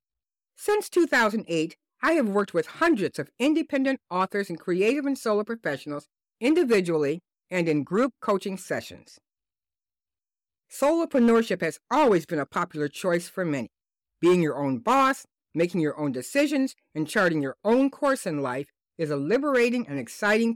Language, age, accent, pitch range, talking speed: English, 50-69, American, 165-255 Hz, 145 wpm